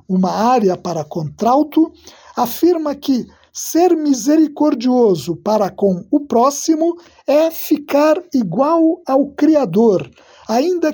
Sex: male